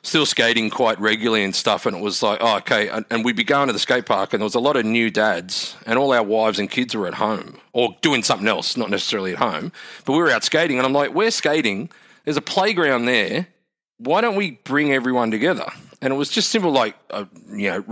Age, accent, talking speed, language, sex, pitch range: 40-59, Australian, 250 wpm, English, male, 110-135 Hz